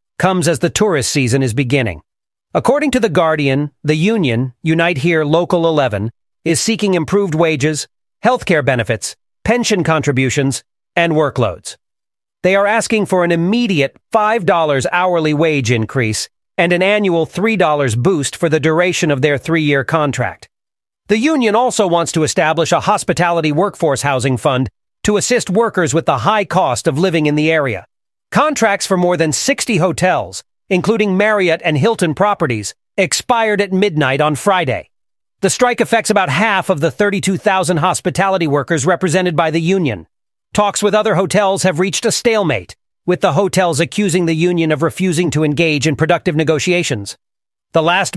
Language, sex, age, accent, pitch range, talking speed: English, male, 40-59, American, 150-195 Hz, 155 wpm